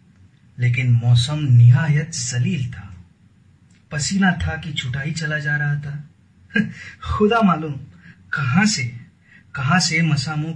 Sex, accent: male, native